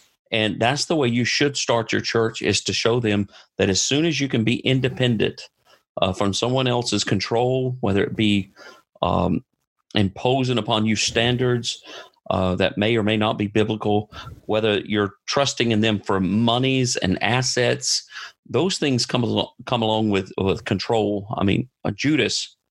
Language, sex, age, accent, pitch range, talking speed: English, male, 40-59, American, 100-125 Hz, 170 wpm